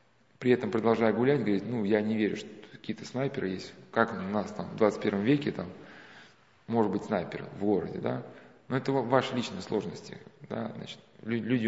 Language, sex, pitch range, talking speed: Russian, male, 110-150 Hz, 170 wpm